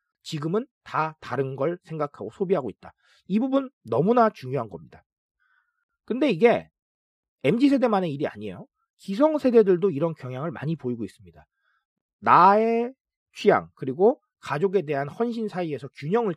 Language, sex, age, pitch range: Korean, male, 40-59, 150-230 Hz